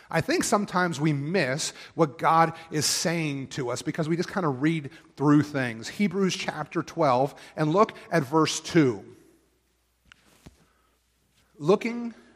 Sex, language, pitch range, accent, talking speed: male, English, 130-175 Hz, American, 135 wpm